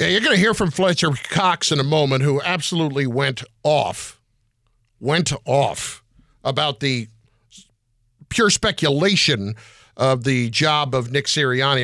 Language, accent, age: English, American, 50-69